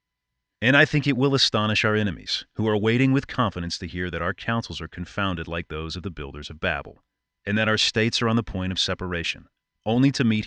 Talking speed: 230 wpm